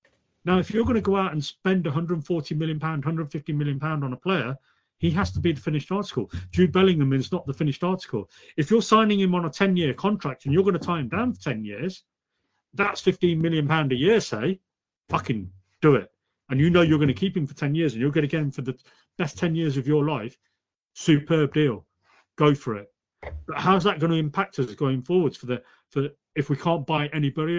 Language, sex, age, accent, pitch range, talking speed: English, male, 40-59, British, 130-175 Hz, 230 wpm